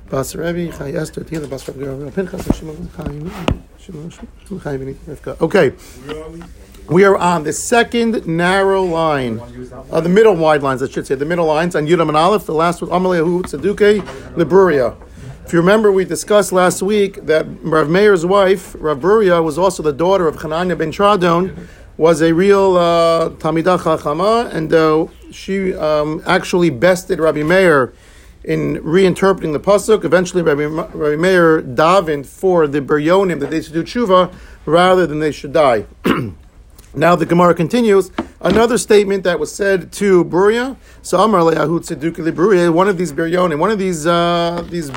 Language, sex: English, male